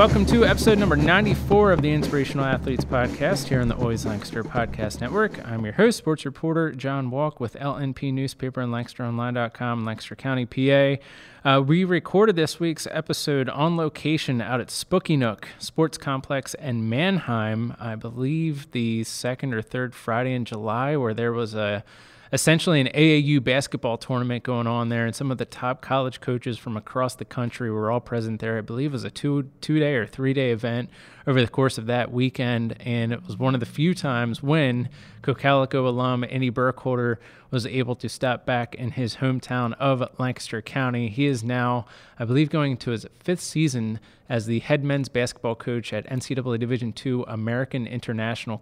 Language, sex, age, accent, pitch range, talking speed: English, male, 30-49, American, 120-140 Hz, 180 wpm